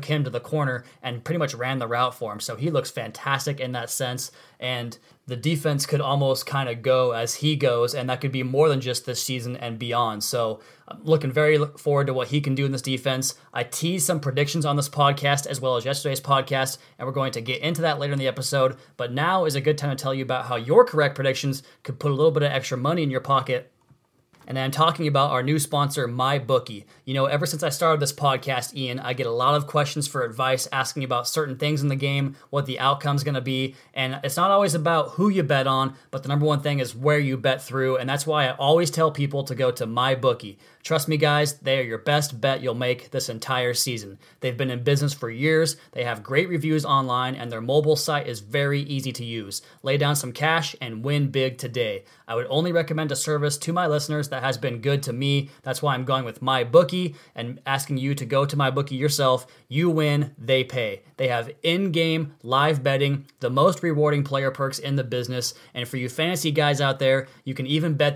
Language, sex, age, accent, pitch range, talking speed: English, male, 20-39, American, 130-150 Hz, 235 wpm